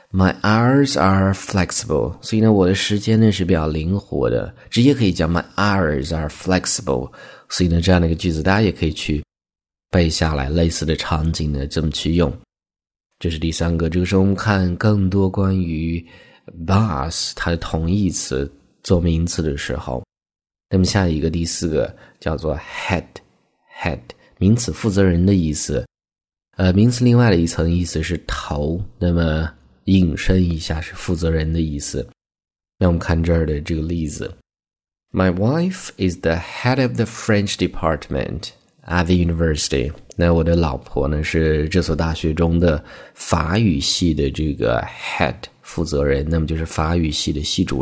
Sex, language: male, Chinese